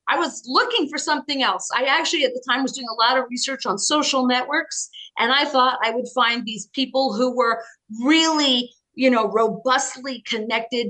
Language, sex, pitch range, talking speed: English, female, 225-280 Hz, 195 wpm